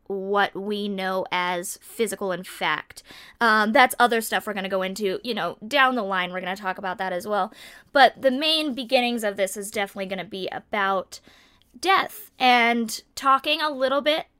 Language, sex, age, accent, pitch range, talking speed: English, female, 20-39, American, 200-255 Hz, 195 wpm